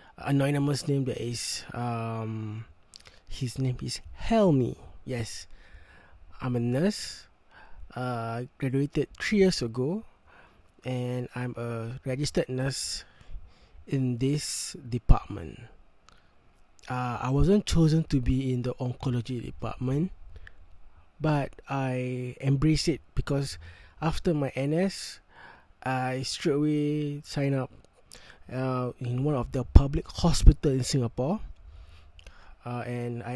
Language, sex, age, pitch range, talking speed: English, male, 20-39, 105-140 Hz, 110 wpm